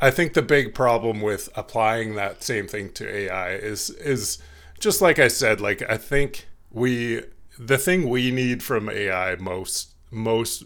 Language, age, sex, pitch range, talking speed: English, 30-49, male, 100-125 Hz, 170 wpm